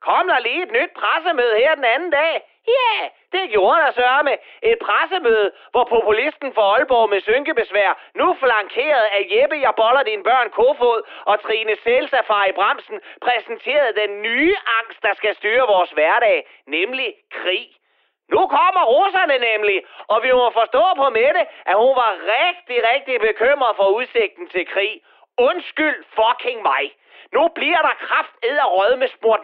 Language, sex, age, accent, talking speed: Danish, male, 30-49, native, 165 wpm